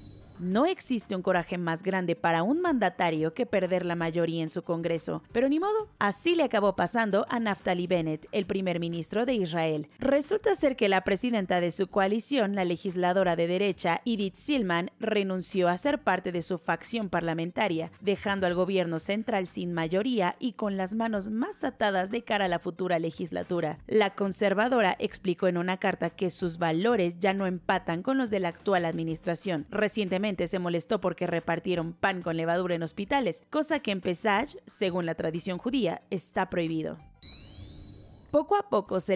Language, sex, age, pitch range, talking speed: Spanish, female, 30-49, 175-215 Hz, 175 wpm